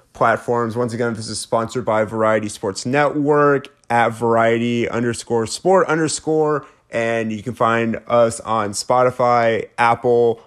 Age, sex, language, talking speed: 30-49, male, English, 130 wpm